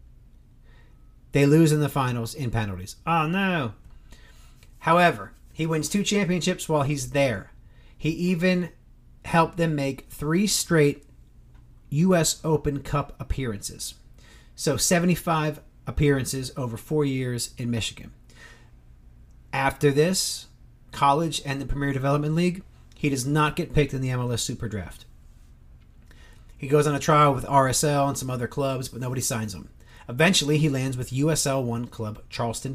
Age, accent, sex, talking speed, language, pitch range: 40-59, American, male, 140 wpm, English, 120-165 Hz